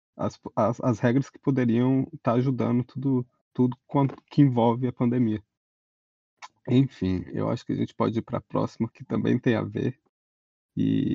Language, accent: Portuguese, Brazilian